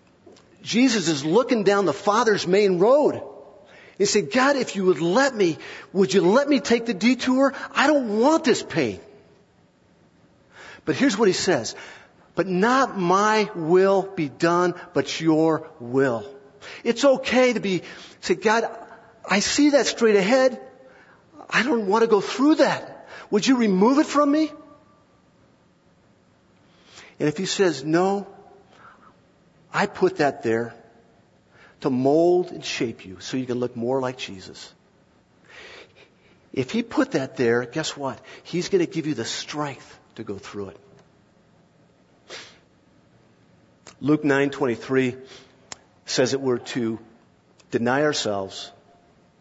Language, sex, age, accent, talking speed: English, male, 50-69, American, 140 wpm